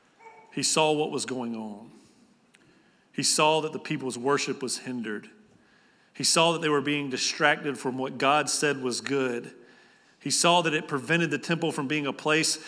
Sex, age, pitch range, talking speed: male, 40-59, 130-160 Hz, 180 wpm